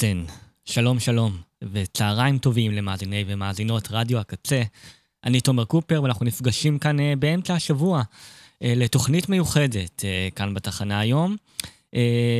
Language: English